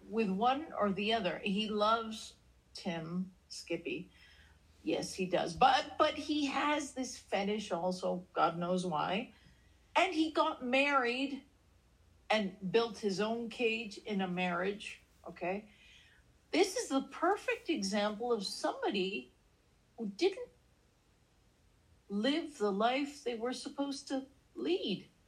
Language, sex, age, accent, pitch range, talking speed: English, female, 50-69, American, 180-240 Hz, 125 wpm